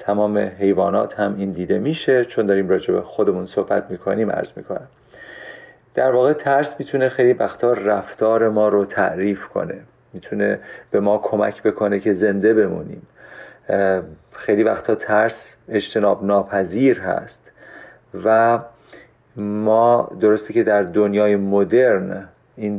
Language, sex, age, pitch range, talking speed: Persian, male, 40-59, 100-115 Hz, 125 wpm